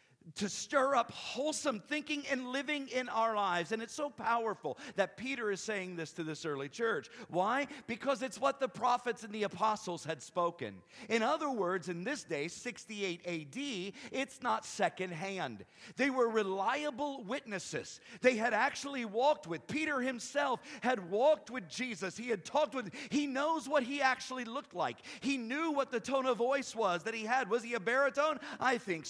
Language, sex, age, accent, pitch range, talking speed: English, male, 50-69, American, 215-280 Hz, 185 wpm